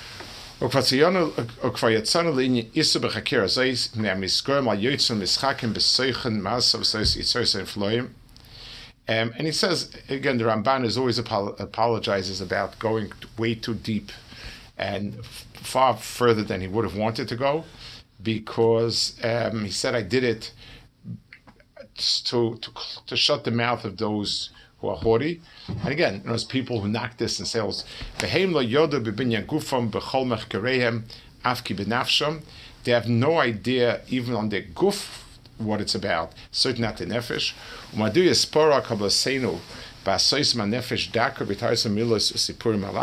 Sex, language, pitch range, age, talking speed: male, English, 110-125 Hz, 50-69, 90 wpm